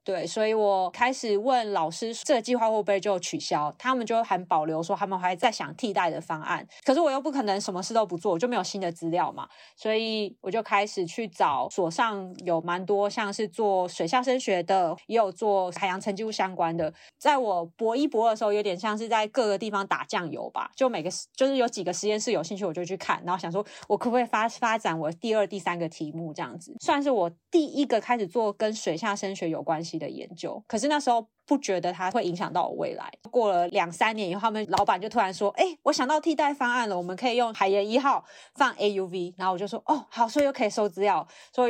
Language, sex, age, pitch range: Chinese, female, 20-39, 185-245 Hz